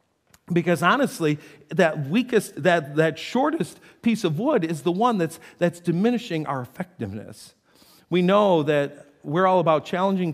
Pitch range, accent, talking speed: 130-185 Hz, American, 145 wpm